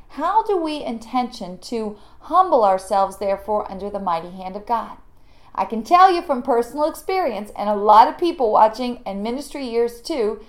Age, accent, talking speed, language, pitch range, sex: 40-59, American, 175 wpm, English, 200-300 Hz, female